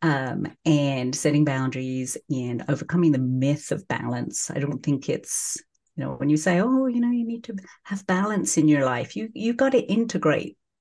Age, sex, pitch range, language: 50-69, female, 145-185 Hz, English